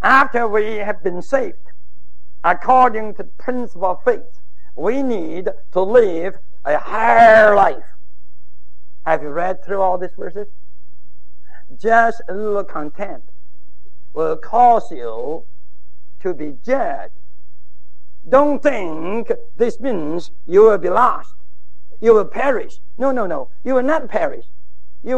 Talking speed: 130 wpm